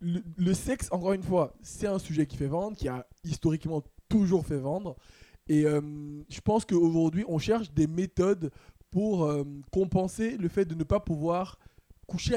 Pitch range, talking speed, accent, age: 145-180 Hz, 180 wpm, French, 20-39